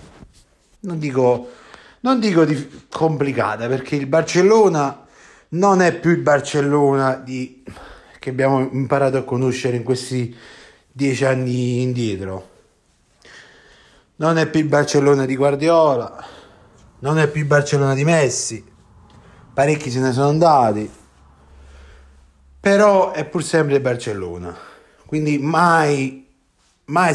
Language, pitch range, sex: Italian, 115-155 Hz, male